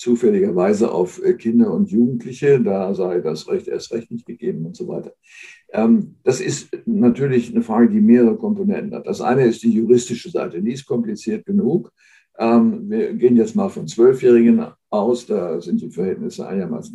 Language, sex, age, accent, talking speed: German, male, 60-79, German, 175 wpm